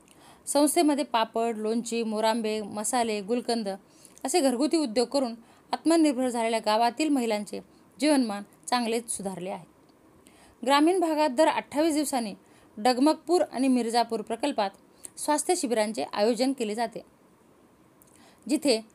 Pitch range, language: 225-305 Hz, Hindi